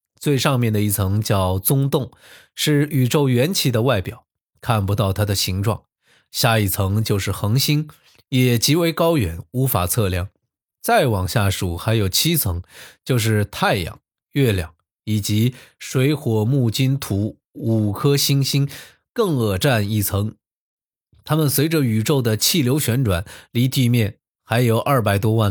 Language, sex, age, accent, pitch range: Chinese, male, 20-39, native, 105-135 Hz